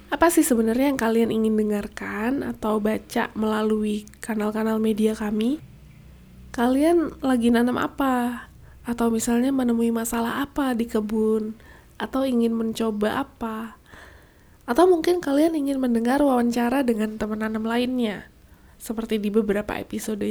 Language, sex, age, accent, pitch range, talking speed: Indonesian, female, 20-39, native, 220-265 Hz, 125 wpm